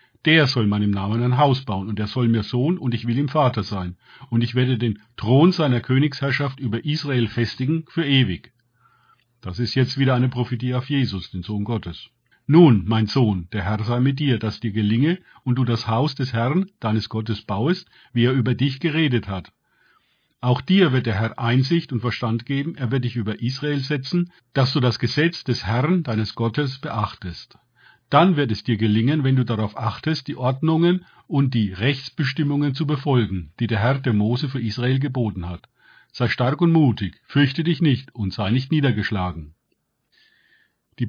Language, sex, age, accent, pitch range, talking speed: German, male, 50-69, German, 110-145 Hz, 185 wpm